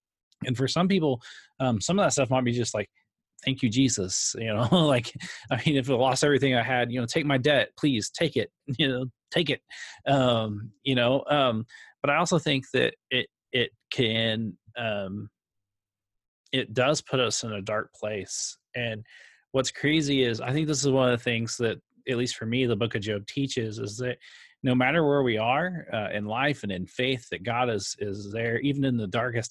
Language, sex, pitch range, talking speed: English, male, 110-135 Hz, 210 wpm